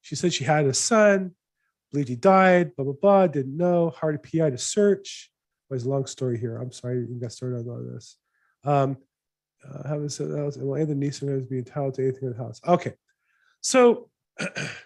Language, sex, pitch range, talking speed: English, male, 140-180 Hz, 215 wpm